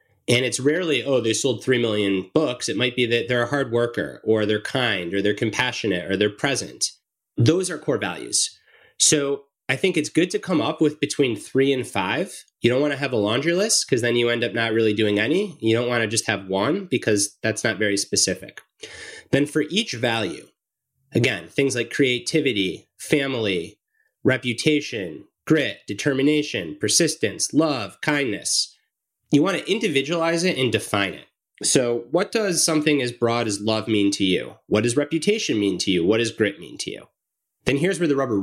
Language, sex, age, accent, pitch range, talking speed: English, male, 30-49, American, 115-160 Hz, 190 wpm